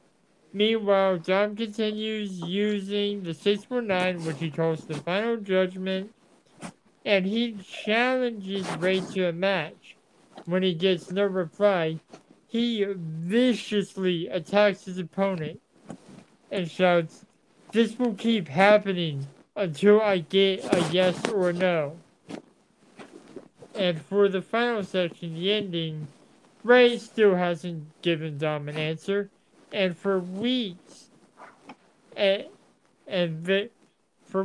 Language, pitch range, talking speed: English, 175-210 Hz, 105 wpm